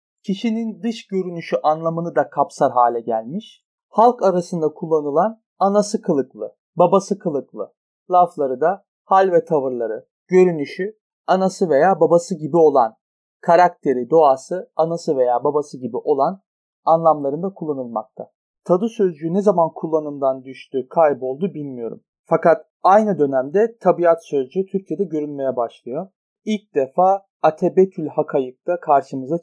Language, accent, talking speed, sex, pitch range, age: Turkish, native, 115 wpm, male, 145-195 Hz, 40-59